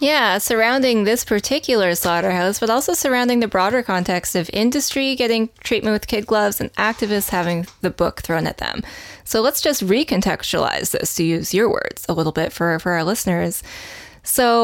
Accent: American